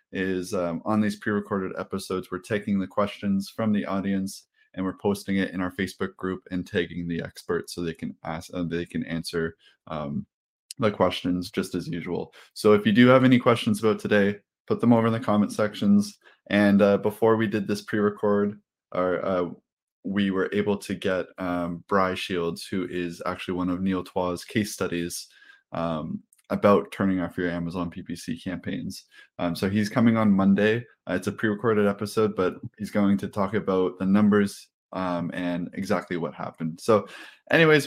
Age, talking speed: 20-39, 180 wpm